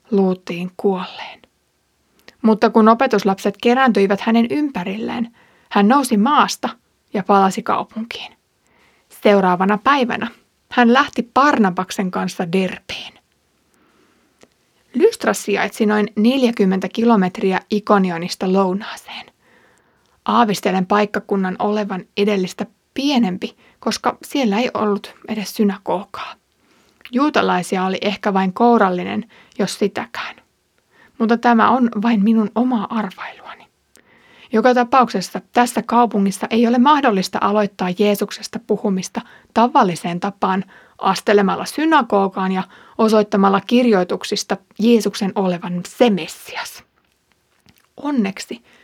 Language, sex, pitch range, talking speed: Finnish, female, 195-235 Hz, 90 wpm